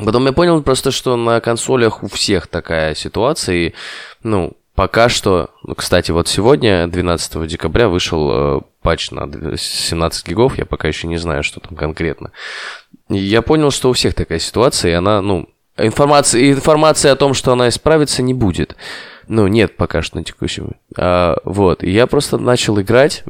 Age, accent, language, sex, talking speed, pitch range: 20-39, native, Russian, male, 175 wpm, 90-110 Hz